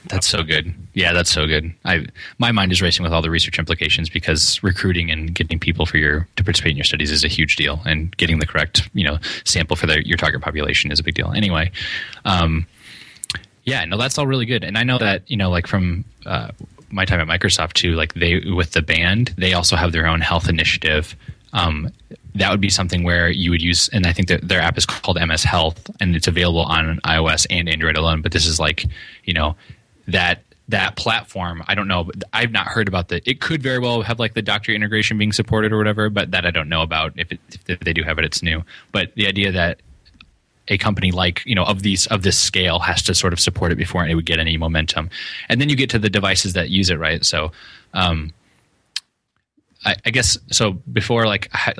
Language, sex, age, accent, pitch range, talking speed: English, male, 10-29, American, 80-105 Hz, 235 wpm